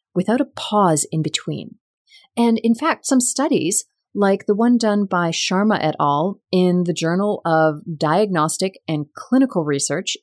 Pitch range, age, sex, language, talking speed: 165-245 Hz, 30-49, female, English, 155 wpm